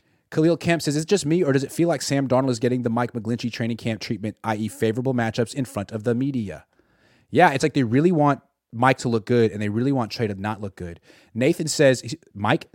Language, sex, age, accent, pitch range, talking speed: English, male, 30-49, American, 110-140 Hz, 245 wpm